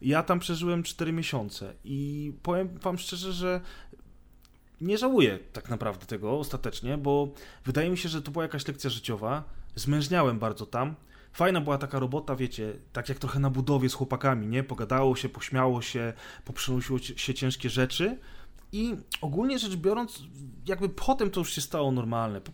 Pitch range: 125-150 Hz